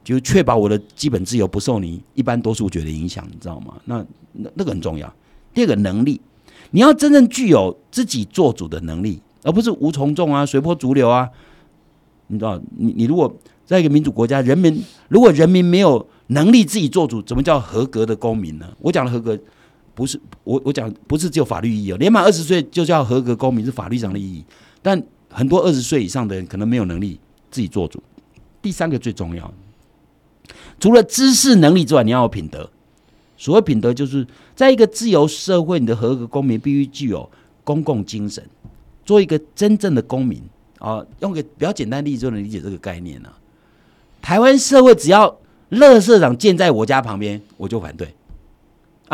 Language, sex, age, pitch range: Chinese, male, 50-69, 110-165 Hz